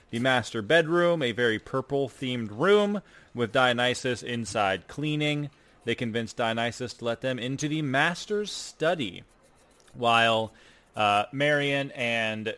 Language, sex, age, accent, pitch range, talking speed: English, male, 30-49, American, 115-150 Hz, 120 wpm